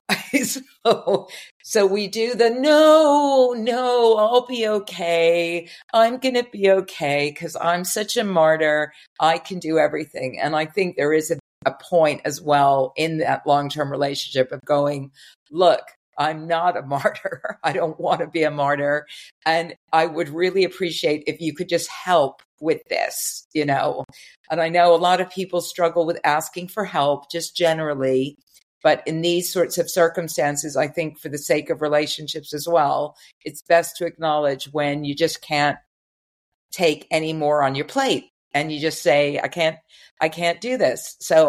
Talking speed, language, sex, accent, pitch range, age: 175 wpm, English, female, American, 150-180 Hz, 50-69